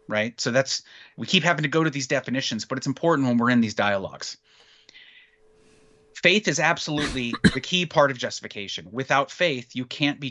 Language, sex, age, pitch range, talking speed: English, male, 30-49, 115-155 Hz, 185 wpm